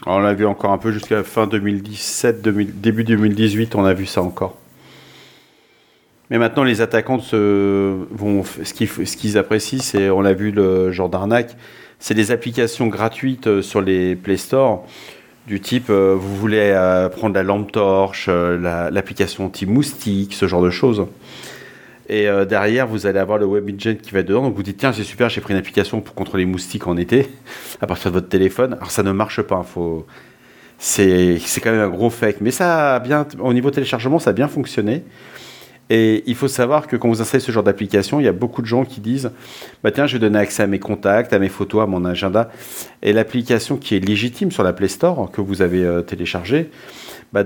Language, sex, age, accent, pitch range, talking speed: French, male, 40-59, French, 95-120 Hz, 205 wpm